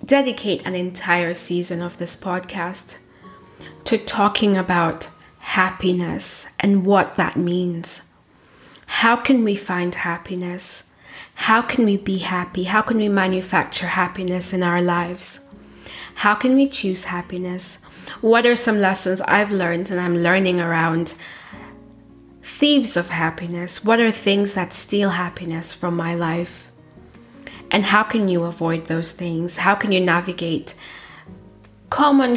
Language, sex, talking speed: English, female, 135 wpm